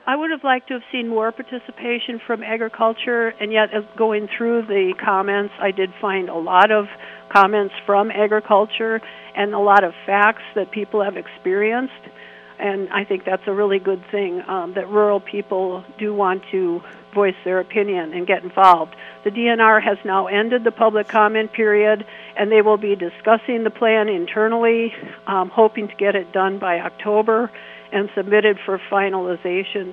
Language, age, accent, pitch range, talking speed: English, 50-69, American, 190-220 Hz, 170 wpm